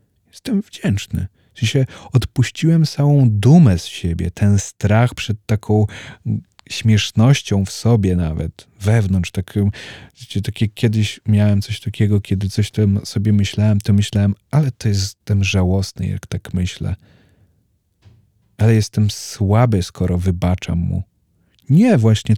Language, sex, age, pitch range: Polish, male, 40-59, 95-110 Hz